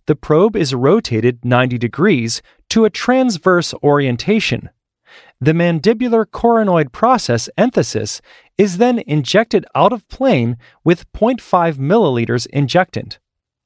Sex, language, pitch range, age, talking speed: male, English, 130-205 Hz, 30-49, 110 wpm